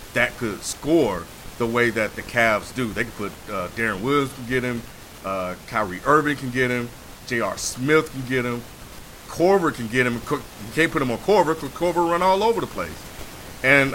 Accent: American